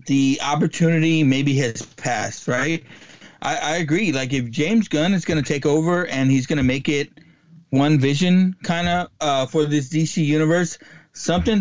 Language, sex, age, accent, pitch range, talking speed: English, male, 30-49, American, 125-160 Hz, 170 wpm